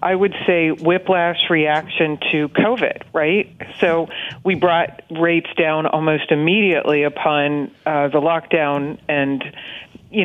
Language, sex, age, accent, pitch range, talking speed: English, female, 40-59, American, 155-195 Hz, 125 wpm